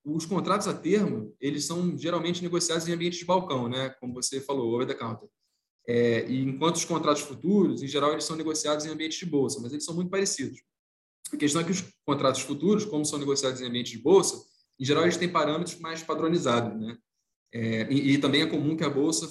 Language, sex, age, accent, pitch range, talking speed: Portuguese, male, 20-39, Brazilian, 135-165 Hz, 220 wpm